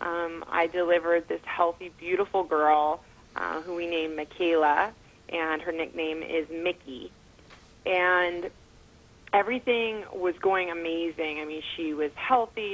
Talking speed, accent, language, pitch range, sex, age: 125 wpm, American, English, 165-205 Hz, female, 30-49